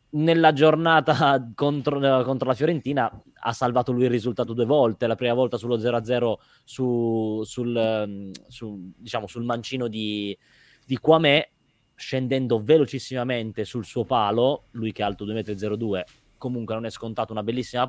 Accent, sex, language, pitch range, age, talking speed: native, male, Italian, 110-135 Hz, 20-39, 140 wpm